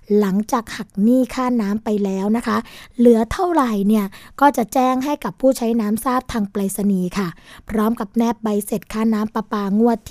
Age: 20-39